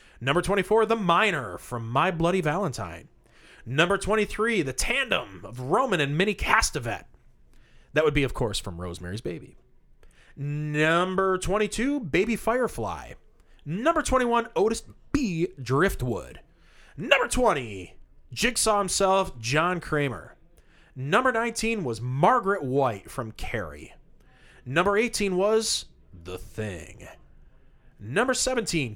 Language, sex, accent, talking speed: English, male, American, 110 wpm